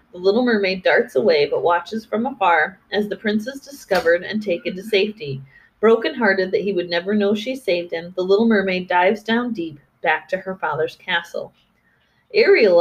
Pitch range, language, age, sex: 185-290 Hz, English, 30-49, female